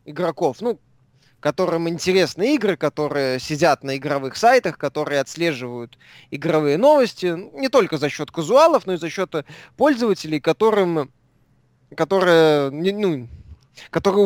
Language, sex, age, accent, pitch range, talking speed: Russian, male, 20-39, native, 145-200 Hz, 120 wpm